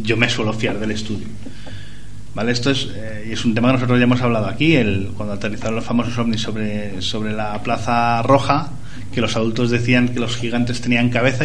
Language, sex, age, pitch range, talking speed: Spanish, male, 30-49, 105-125 Hz, 205 wpm